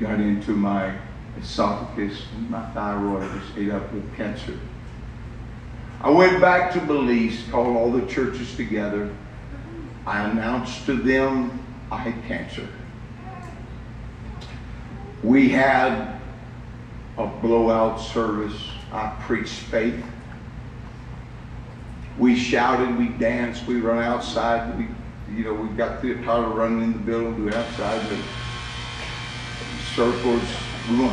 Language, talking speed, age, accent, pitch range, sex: English, 120 wpm, 50-69, American, 115-125 Hz, male